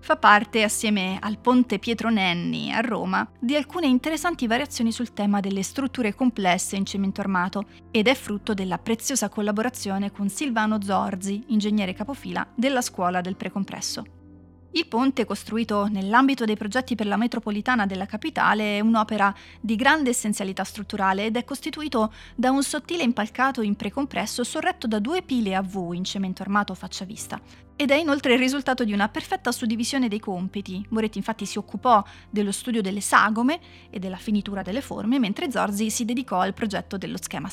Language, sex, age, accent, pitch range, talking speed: Italian, female, 30-49, native, 195-255 Hz, 170 wpm